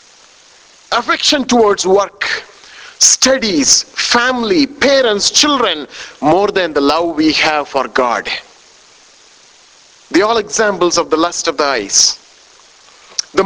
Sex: male